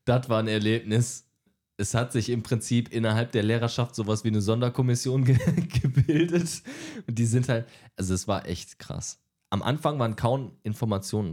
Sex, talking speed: male, 170 wpm